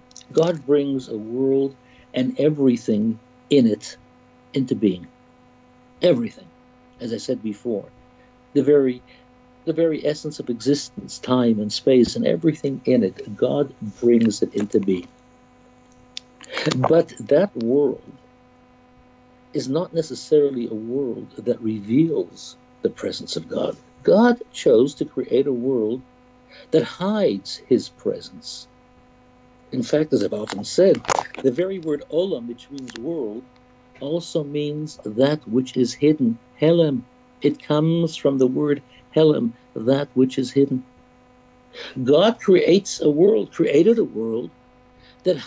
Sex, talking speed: male, 125 wpm